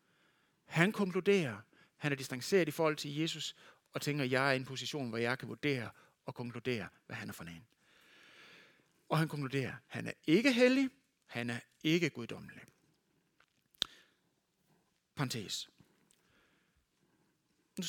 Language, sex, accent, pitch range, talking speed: Danish, male, native, 135-195 Hz, 145 wpm